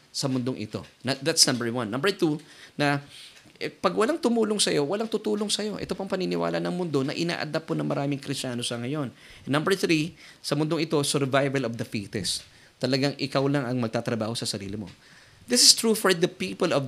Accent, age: native, 20-39